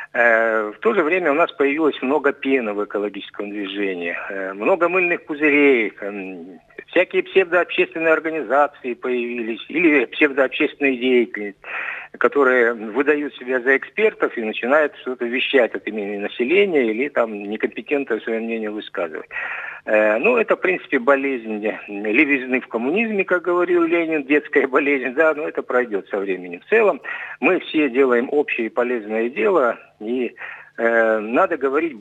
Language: Russian